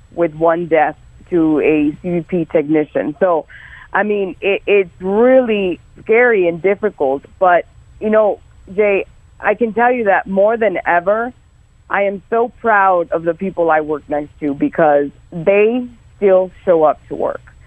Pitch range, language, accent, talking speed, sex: 160-205 Hz, English, American, 155 wpm, female